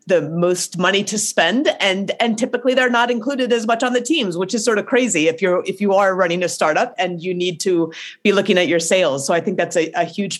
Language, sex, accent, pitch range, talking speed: English, female, American, 170-210 Hz, 255 wpm